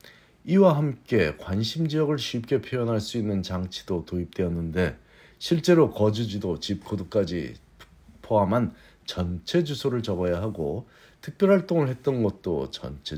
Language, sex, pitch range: Korean, male, 90-130 Hz